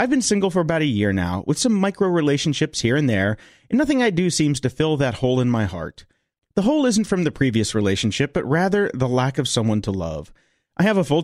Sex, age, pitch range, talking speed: male, 40-59, 120-170 Hz, 245 wpm